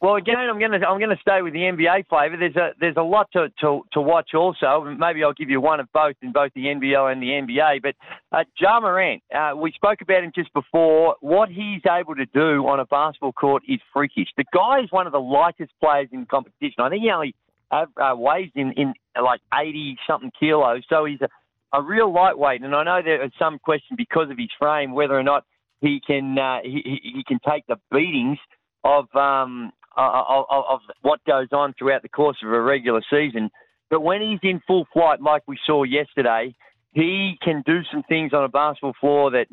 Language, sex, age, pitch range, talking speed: English, male, 40-59, 140-175 Hz, 220 wpm